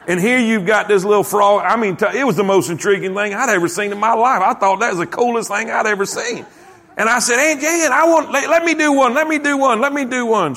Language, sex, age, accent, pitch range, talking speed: English, male, 50-69, American, 170-240 Hz, 295 wpm